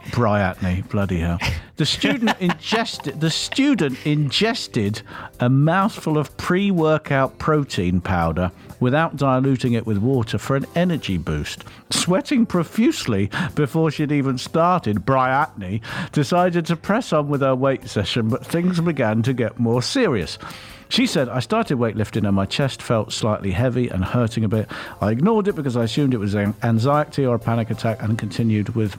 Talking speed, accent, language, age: 160 wpm, British, English, 50-69